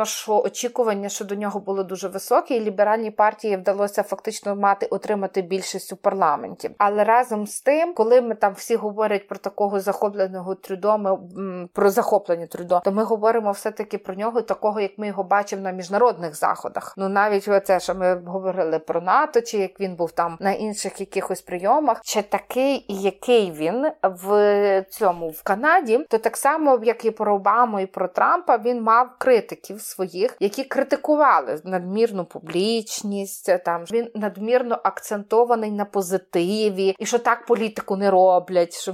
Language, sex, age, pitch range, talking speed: Ukrainian, female, 30-49, 190-225 Hz, 160 wpm